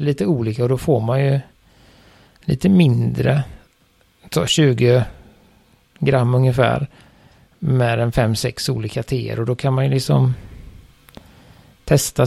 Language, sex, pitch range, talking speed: Swedish, male, 110-135 Hz, 120 wpm